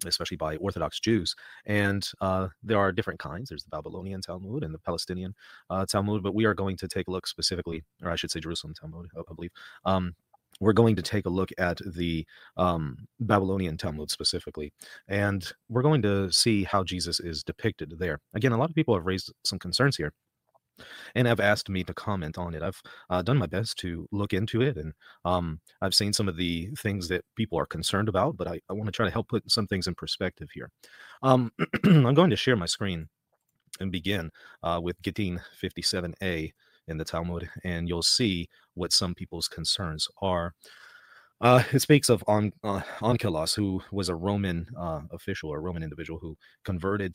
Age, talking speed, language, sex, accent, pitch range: 30-49, 200 wpm, English, male, American, 85-105 Hz